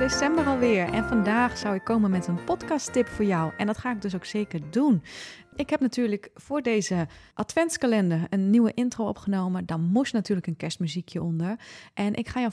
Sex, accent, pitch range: female, Dutch, 180-230 Hz